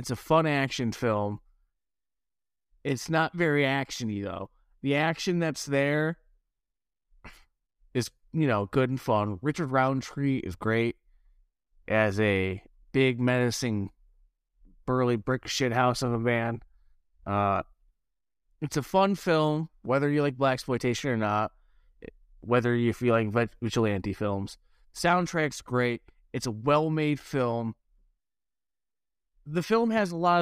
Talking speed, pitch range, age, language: 125 wpm, 110-145 Hz, 30-49, English